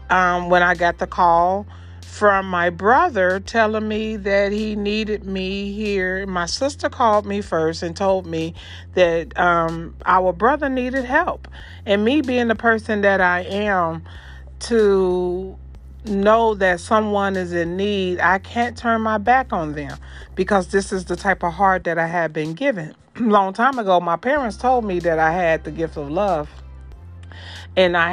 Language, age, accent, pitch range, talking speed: English, 40-59, American, 160-210 Hz, 170 wpm